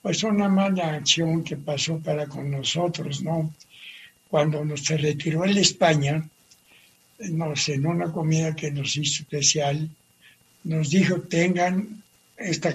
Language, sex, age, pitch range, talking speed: Spanish, male, 60-79, 150-175 Hz, 125 wpm